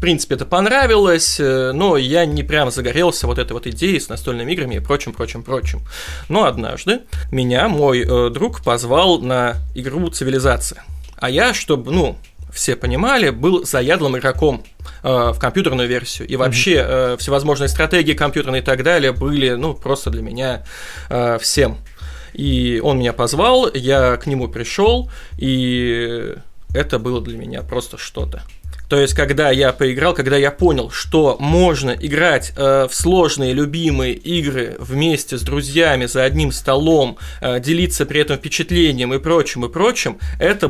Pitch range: 125-155 Hz